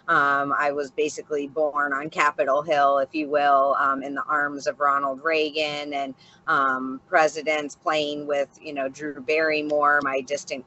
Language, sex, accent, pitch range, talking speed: English, female, American, 145-165 Hz, 155 wpm